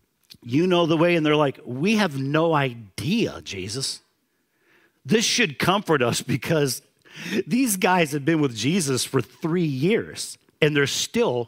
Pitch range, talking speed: 130-180 Hz, 150 wpm